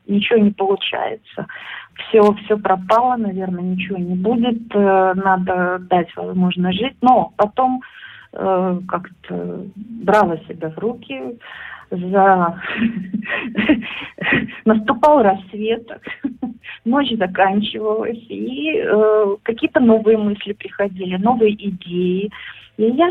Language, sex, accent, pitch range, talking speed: Russian, female, native, 185-225 Hz, 95 wpm